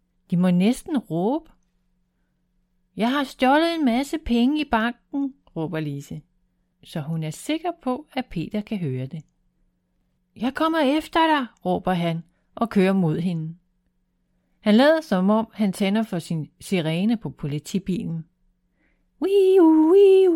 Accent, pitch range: native, 175-235 Hz